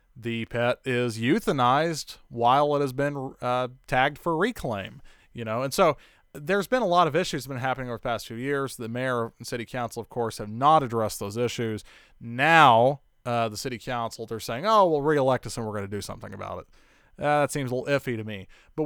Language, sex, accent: English, male, American